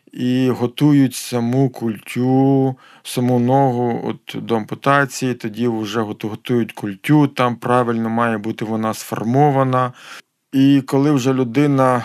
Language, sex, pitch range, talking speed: Ukrainian, male, 115-135 Hz, 110 wpm